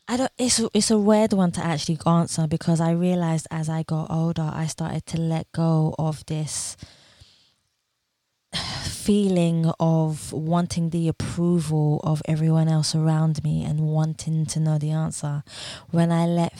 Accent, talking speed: British, 155 wpm